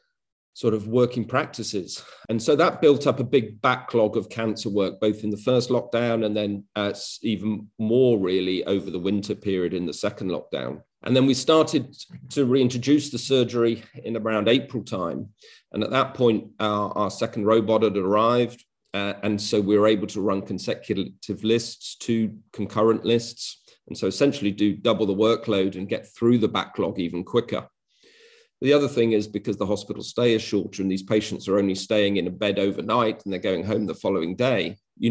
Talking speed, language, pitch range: 190 wpm, English, 105-120 Hz